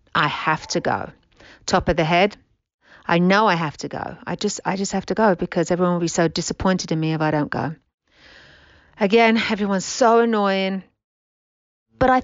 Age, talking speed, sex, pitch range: 40-59, 190 wpm, female, 165-220 Hz